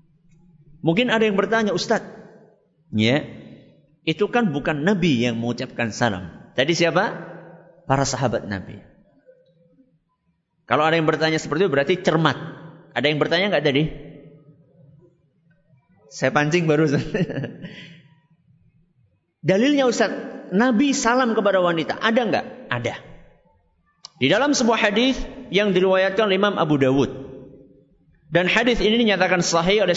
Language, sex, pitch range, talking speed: Malay, male, 155-200 Hz, 120 wpm